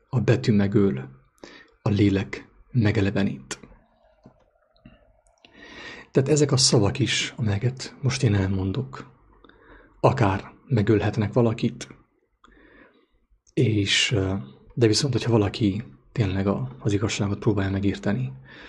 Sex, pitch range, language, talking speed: male, 100-125 Hz, English, 90 wpm